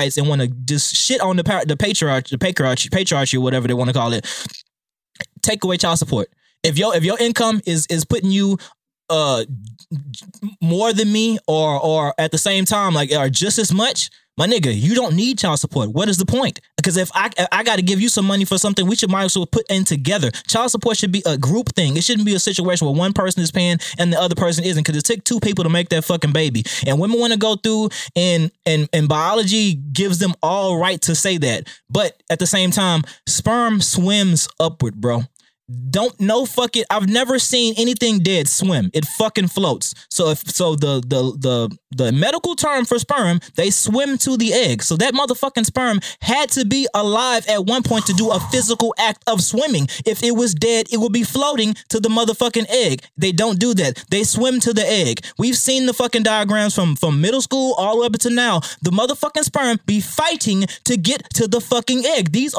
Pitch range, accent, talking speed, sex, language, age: 160-230 Hz, American, 220 wpm, male, English, 20-39